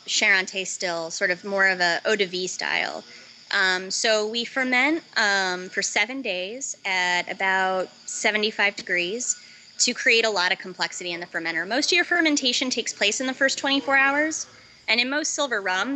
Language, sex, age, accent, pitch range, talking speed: English, female, 20-39, American, 180-230 Hz, 180 wpm